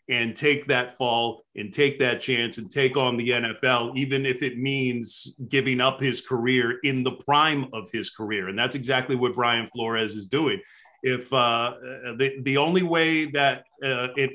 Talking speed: 175 wpm